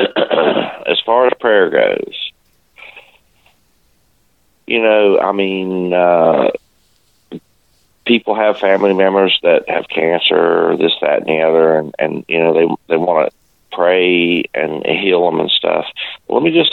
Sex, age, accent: male, 40-59, American